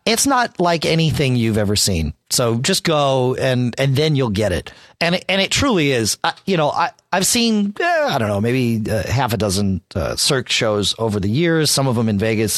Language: English